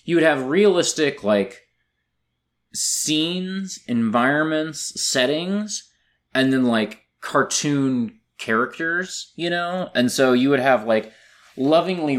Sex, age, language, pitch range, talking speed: male, 20-39, English, 105-150 Hz, 110 wpm